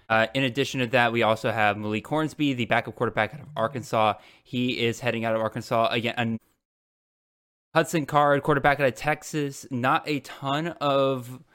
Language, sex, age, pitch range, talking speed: English, male, 10-29, 120-145 Hz, 170 wpm